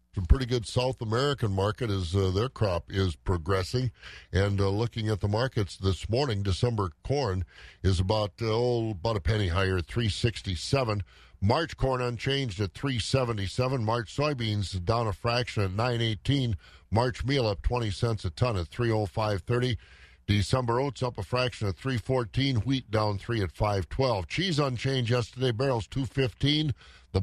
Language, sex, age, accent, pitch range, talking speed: English, male, 50-69, American, 100-135 Hz, 180 wpm